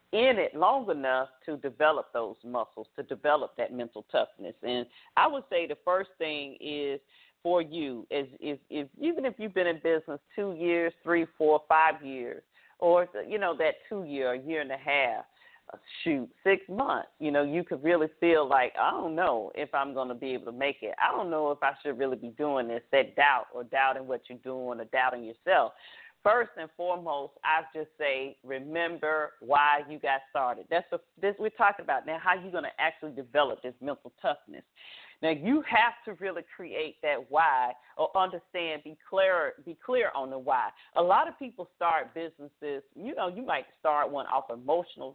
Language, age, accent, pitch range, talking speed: English, 40-59, American, 140-180 Hz, 190 wpm